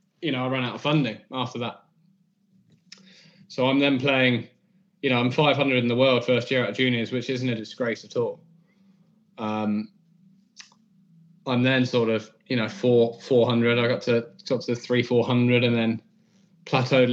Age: 20-39